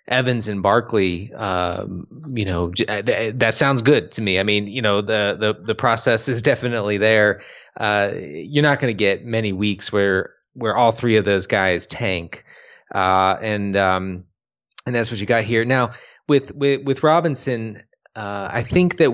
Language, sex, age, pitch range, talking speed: English, male, 30-49, 100-125 Hz, 180 wpm